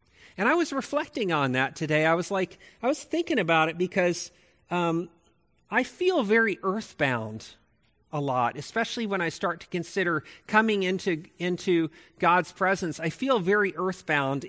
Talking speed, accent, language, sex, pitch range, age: 155 wpm, American, English, male, 185-245 Hz, 40-59